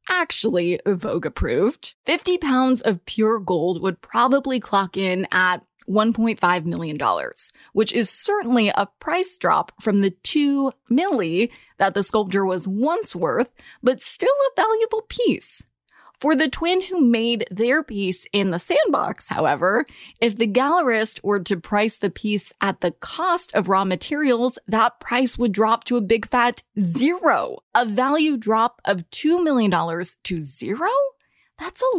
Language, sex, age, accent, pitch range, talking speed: English, female, 20-39, American, 200-275 Hz, 150 wpm